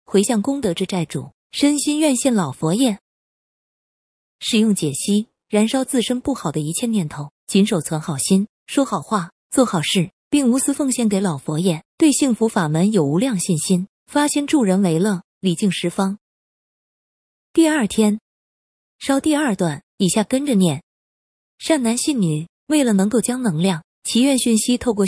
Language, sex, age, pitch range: Chinese, female, 20-39, 175-250 Hz